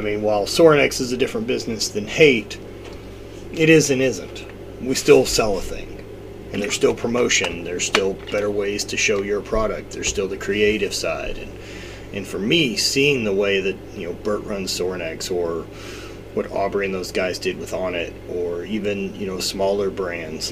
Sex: male